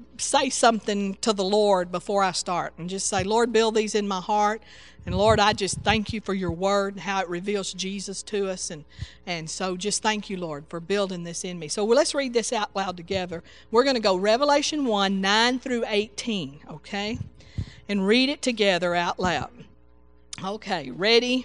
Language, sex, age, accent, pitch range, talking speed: English, female, 50-69, American, 185-235 Hz, 195 wpm